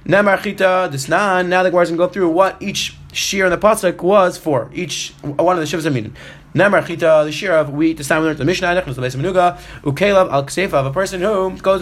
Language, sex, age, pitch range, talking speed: English, male, 20-39, 140-190 Hz, 180 wpm